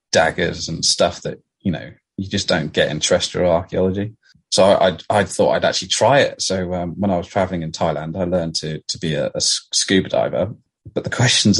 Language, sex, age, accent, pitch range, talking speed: English, male, 30-49, British, 85-105 Hz, 215 wpm